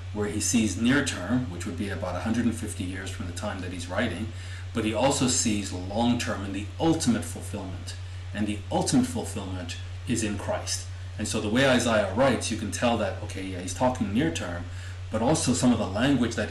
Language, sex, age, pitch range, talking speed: English, male, 30-49, 90-110 Hz, 205 wpm